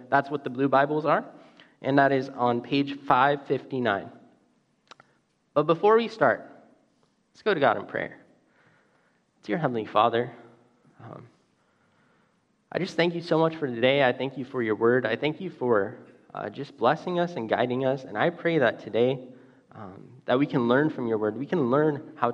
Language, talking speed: English, 185 wpm